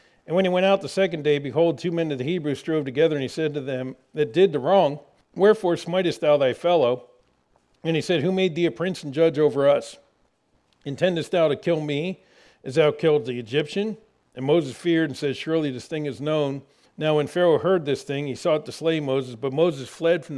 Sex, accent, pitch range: male, American, 150-195 Hz